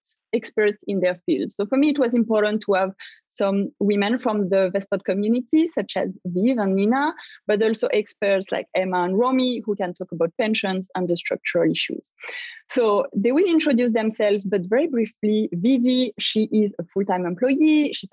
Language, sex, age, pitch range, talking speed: English, female, 30-49, 200-255 Hz, 180 wpm